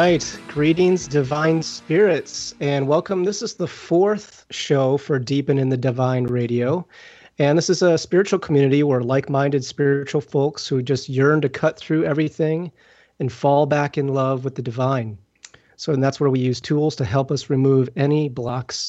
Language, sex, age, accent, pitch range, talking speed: English, male, 30-49, American, 130-155 Hz, 180 wpm